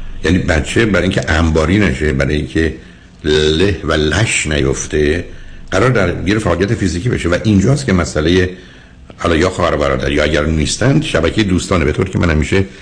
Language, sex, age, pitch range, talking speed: Persian, male, 60-79, 70-95 Hz, 155 wpm